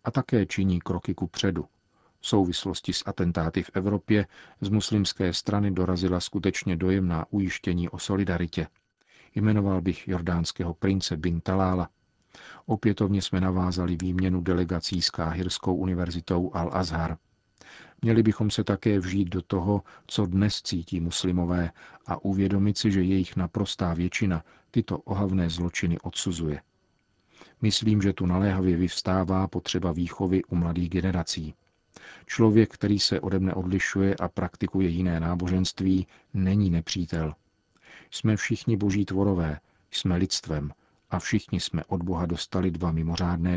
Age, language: 40-59, Czech